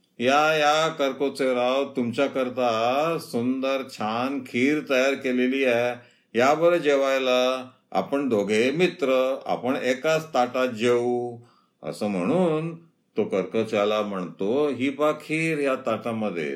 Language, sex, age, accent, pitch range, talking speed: Marathi, male, 50-69, native, 120-155 Hz, 110 wpm